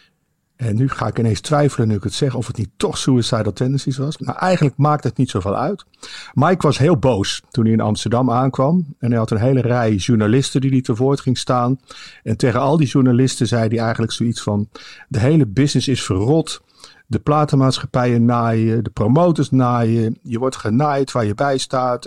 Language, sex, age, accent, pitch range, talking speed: Dutch, male, 50-69, Dutch, 115-145 Hz, 200 wpm